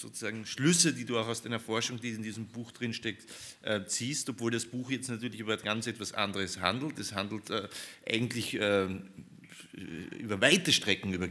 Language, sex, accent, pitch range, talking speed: German, male, German, 95-115 Hz, 180 wpm